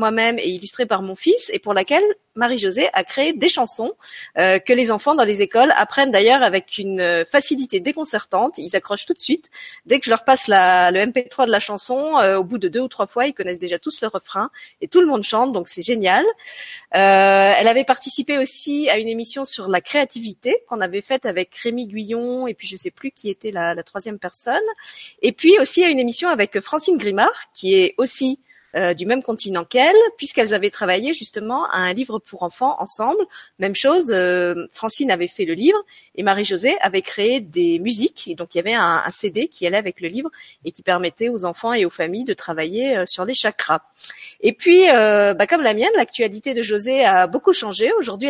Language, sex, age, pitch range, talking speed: French, female, 30-49, 195-285 Hz, 220 wpm